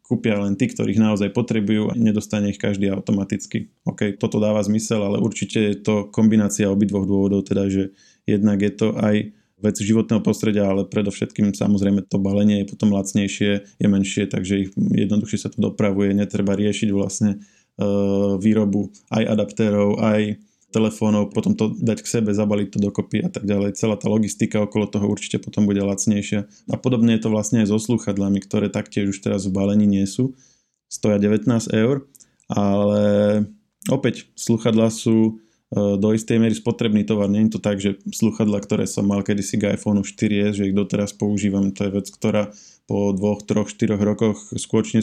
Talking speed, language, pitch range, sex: 170 wpm, Slovak, 100-110 Hz, male